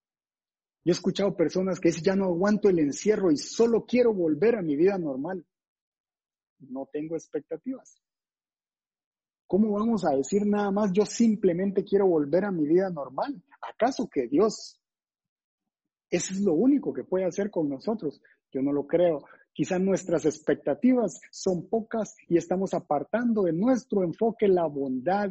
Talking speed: 155 wpm